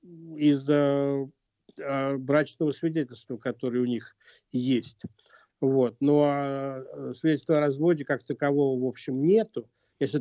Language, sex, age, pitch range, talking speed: Russian, male, 50-69, 130-150 Hz, 120 wpm